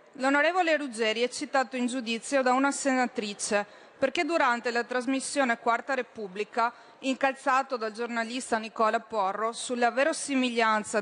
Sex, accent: female, native